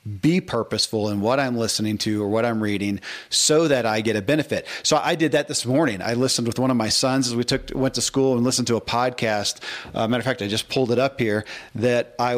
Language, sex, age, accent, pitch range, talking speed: English, male, 40-59, American, 110-135 Hz, 255 wpm